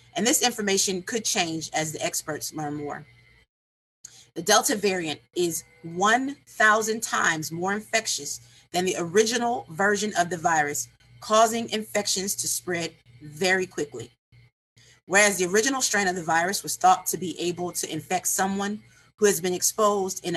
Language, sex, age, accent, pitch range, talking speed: English, female, 30-49, American, 150-205 Hz, 150 wpm